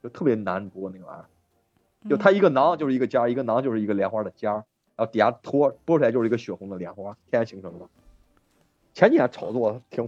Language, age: Chinese, 30-49